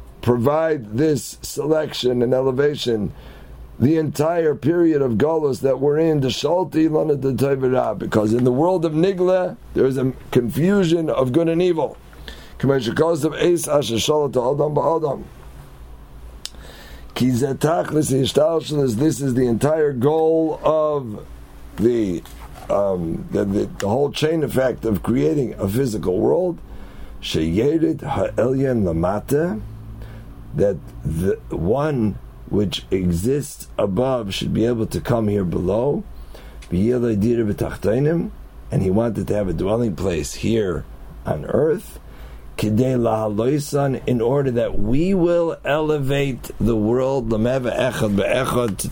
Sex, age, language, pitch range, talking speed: male, 50-69, English, 100-150 Hz, 95 wpm